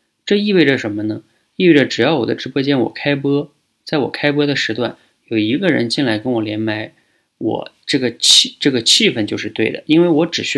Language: Chinese